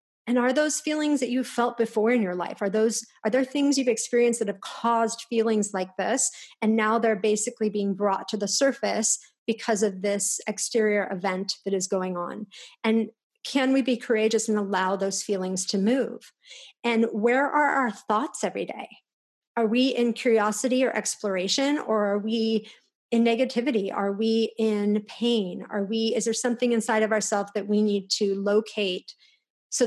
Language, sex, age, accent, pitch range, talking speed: English, female, 40-59, American, 200-235 Hz, 180 wpm